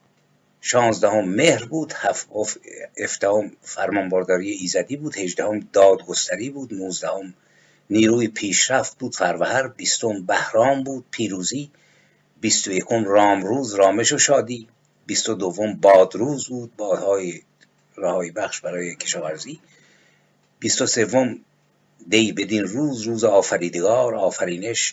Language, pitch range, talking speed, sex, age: Persian, 100-140 Hz, 115 wpm, male, 50-69